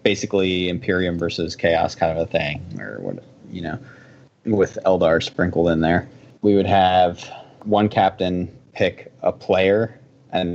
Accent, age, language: American, 20-39, English